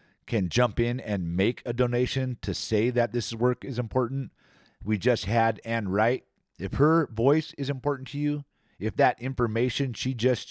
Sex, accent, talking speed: male, American, 175 wpm